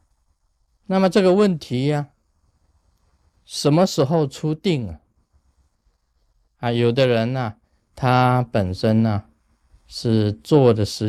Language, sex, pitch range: Chinese, male, 95-130 Hz